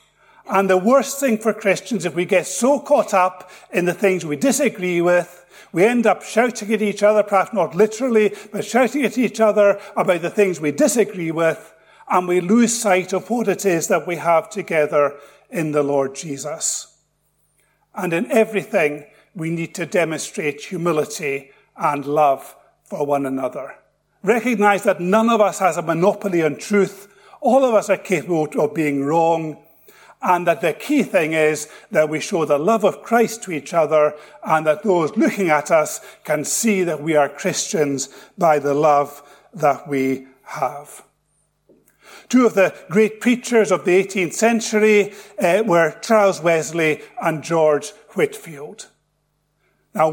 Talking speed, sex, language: 165 wpm, male, English